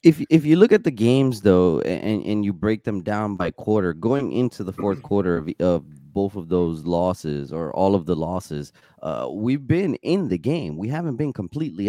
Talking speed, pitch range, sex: 210 wpm, 100-150 Hz, male